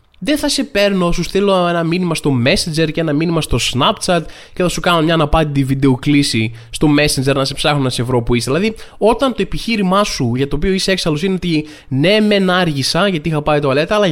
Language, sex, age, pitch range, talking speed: Greek, male, 20-39, 135-190 Hz, 225 wpm